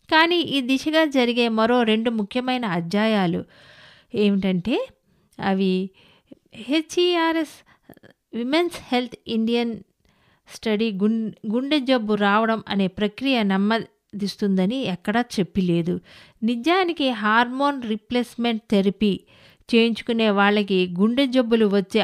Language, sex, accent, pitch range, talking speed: English, female, Indian, 200-265 Hz, 80 wpm